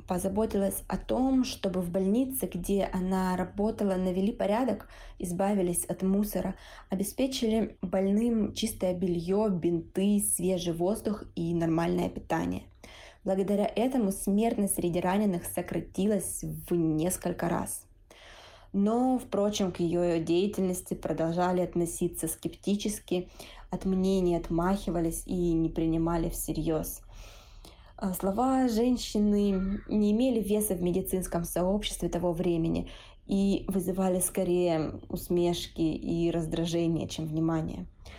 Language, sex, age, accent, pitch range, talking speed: Russian, female, 20-39, native, 170-200 Hz, 105 wpm